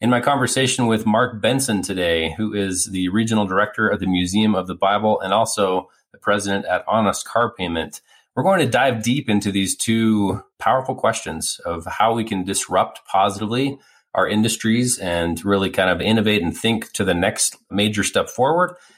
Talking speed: 180 wpm